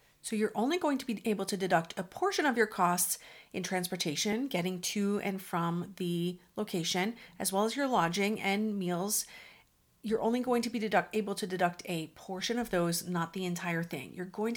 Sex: female